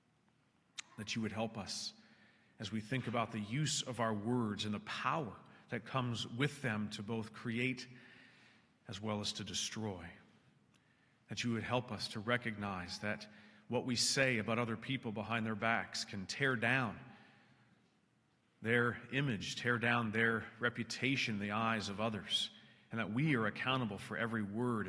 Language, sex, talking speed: English, male, 165 wpm